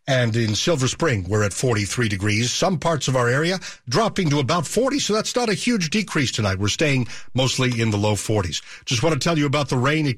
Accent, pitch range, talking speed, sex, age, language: American, 110-155 Hz, 235 wpm, male, 50-69, English